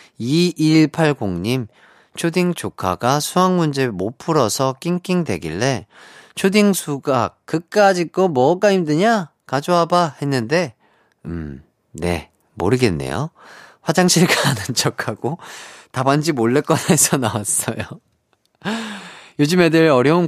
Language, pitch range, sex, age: Korean, 110-155 Hz, male, 30-49